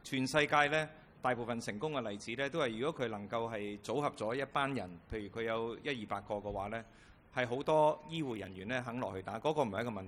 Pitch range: 105-130 Hz